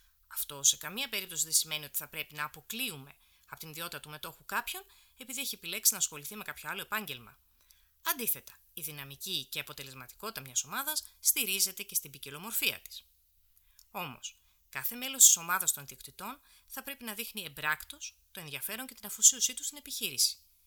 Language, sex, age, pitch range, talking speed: Greek, female, 30-49, 135-190 Hz, 170 wpm